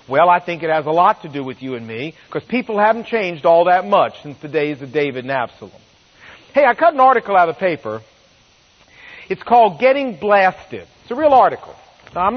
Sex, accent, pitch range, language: male, American, 195-275 Hz, English